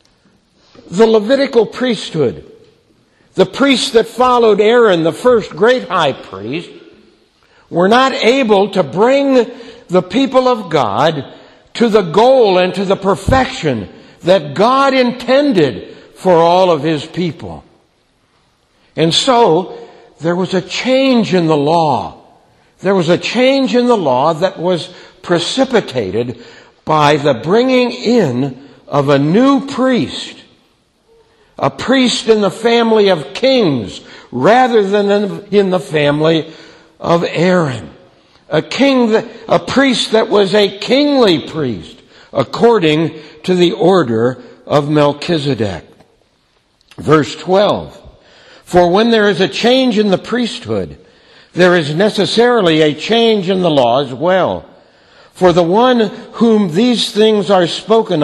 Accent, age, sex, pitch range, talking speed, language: American, 60-79, male, 165-235 Hz, 125 wpm, English